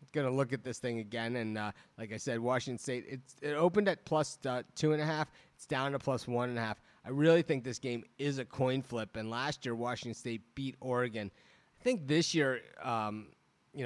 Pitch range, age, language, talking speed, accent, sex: 110-140 Hz, 30-49, English, 230 wpm, American, male